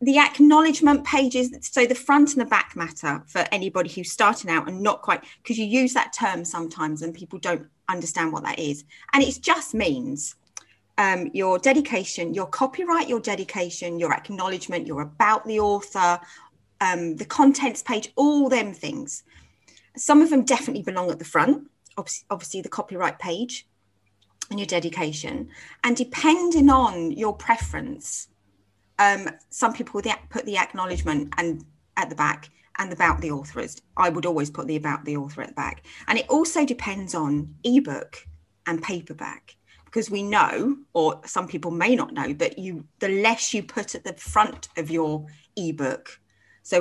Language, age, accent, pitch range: English, 30-49, British, 160-245 Hz